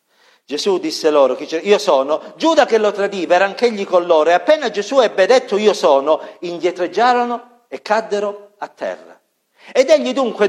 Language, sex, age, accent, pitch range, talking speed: Italian, male, 50-69, native, 200-255 Hz, 160 wpm